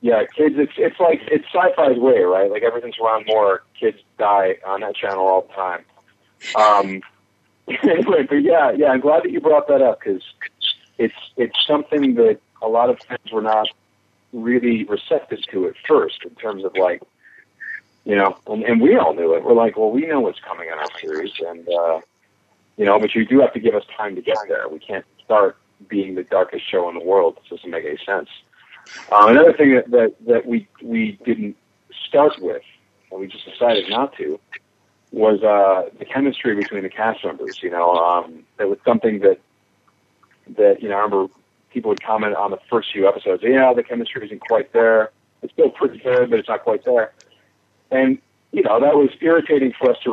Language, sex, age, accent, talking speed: English, male, 40-59, American, 200 wpm